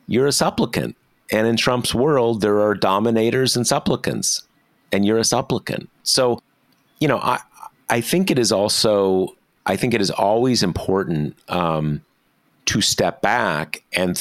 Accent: American